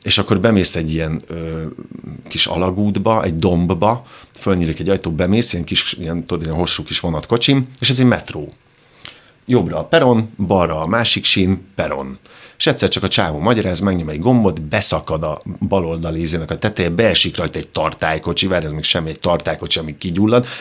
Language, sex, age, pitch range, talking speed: Hungarian, male, 50-69, 85-105 Hz, 180 wpm